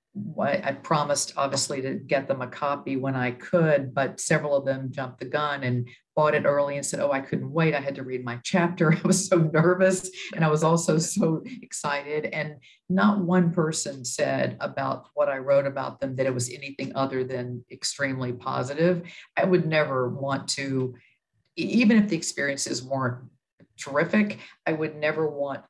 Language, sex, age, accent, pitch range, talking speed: English, female, 50-69, American, 130-165 Hz, 180 wpm